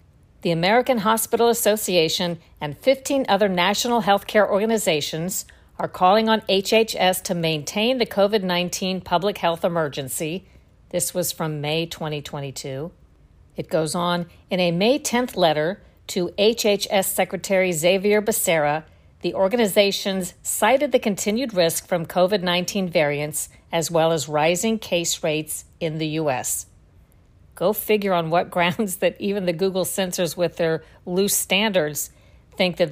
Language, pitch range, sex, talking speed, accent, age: English, 160-195 Hz, female, 135 wpm, American, 50-69